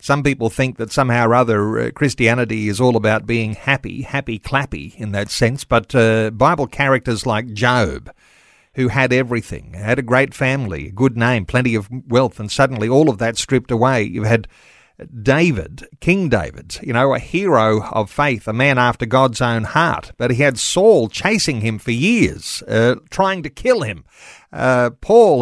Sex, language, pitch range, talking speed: male, English, 115-140 Hz, 180 wpm